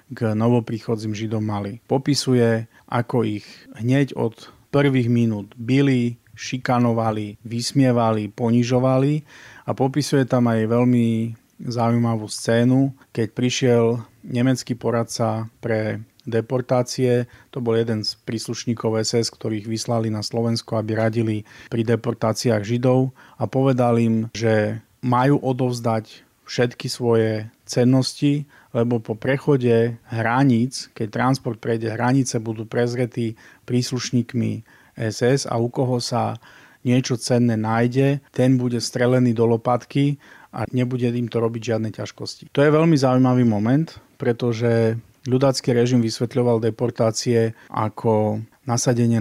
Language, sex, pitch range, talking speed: Slovak, male, 115-130 Hz, 115 wpm